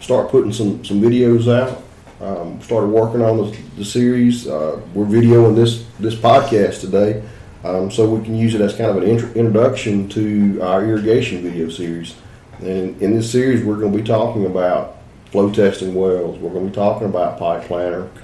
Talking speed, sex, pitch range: 185 wpm, male, 95-115 Hz